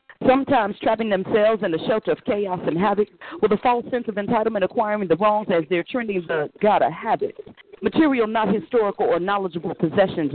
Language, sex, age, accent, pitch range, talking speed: English, female, 40-59, American, 185-270 Hz, 180 wpm